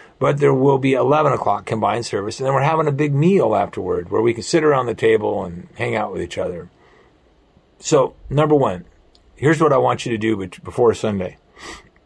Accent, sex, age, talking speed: American, male, 50-69, 205 wpm